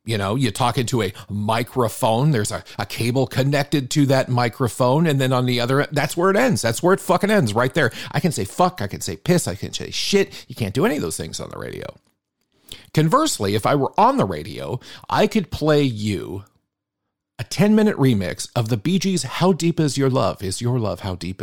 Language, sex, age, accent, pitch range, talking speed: English, male, 40-59, American, 110-160 Hz, 230 wpm